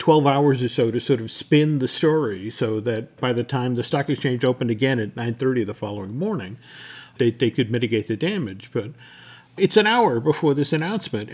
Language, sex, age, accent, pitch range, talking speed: English, male, 50-69, American, 120-145 Hz, 200 wpm